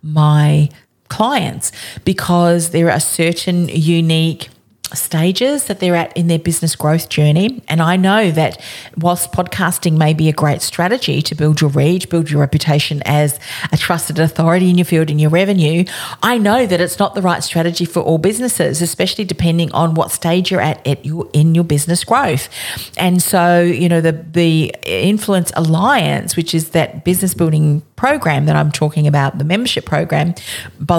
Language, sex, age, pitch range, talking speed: English, female, 40-59, 155-180 Hz, 175 wpm